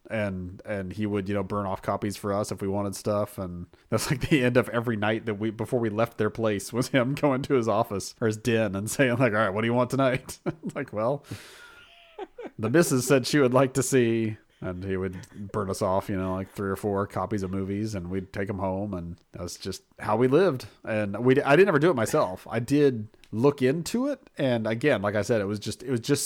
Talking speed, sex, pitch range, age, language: 250 wpm, male, 100-135 Hz, 30-49, English